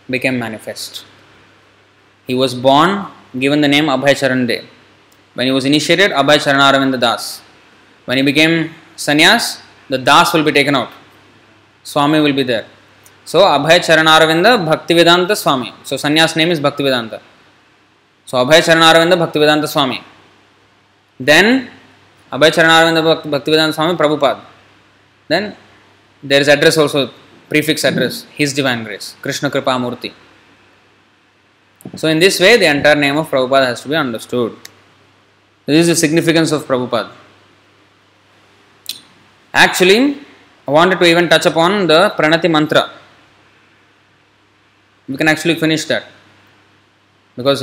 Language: English